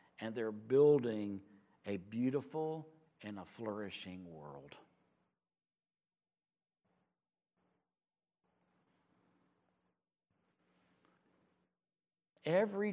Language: English